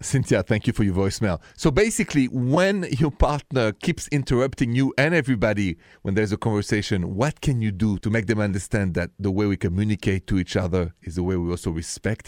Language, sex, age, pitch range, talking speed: English, male, 40-59, 90-125 Hz, 205 wpm